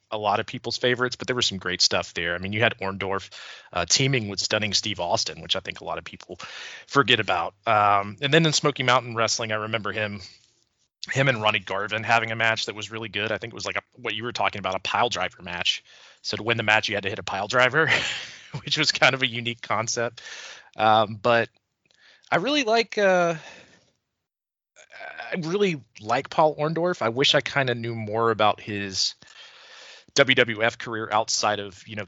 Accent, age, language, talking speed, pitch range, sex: American, 30-49, English, 210 wpm, 95-120 Hz, male